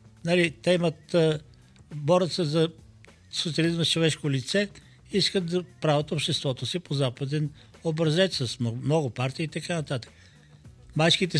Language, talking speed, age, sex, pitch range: Bulgarian, 120 wpm, 50-69, male, 120-170 Hz